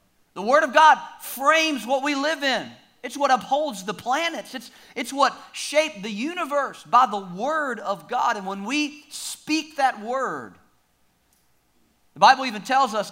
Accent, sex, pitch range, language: American, male, 210-295 Hz, English